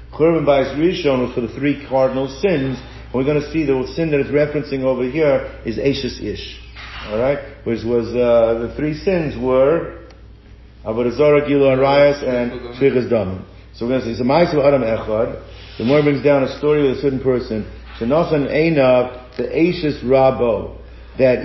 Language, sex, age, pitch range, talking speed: English, male, 50-69, 125-155 Hz, 170 wpm